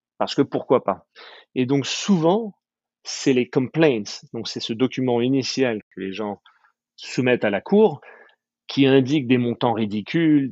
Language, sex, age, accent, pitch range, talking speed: French, male, 40-59, French, 105-150 Hz, 155 wpm